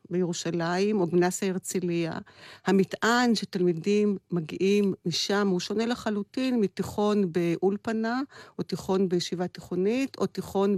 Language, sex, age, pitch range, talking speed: Hebrew, female, 50-69, 180-220 Hz, 105 wpm